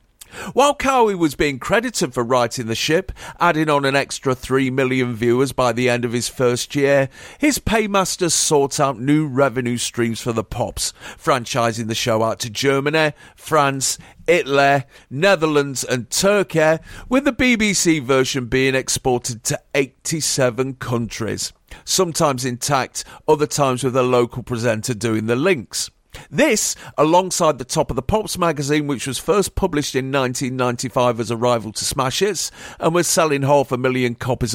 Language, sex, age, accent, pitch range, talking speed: English, male, 50-69, British, 125-160 Hz, 155 wpm